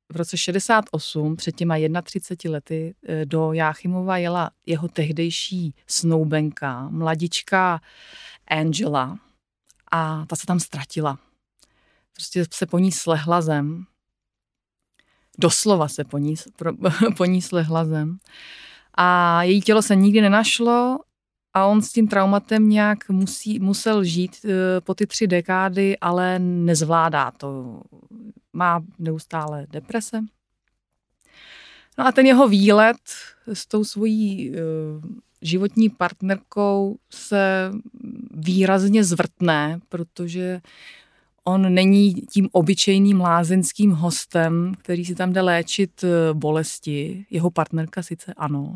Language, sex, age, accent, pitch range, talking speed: Czech, female, 30-49, native, 165-200 Hz, 110 wpm